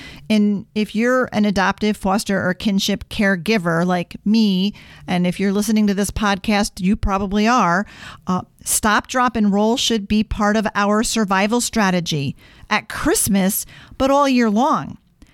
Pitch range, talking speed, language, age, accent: 180-220 Hz, 155 wpm, English, 40-59, American